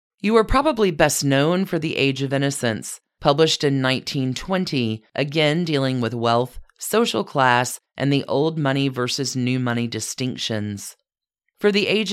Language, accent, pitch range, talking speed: English, American, 130-165 Hz, 150 wpm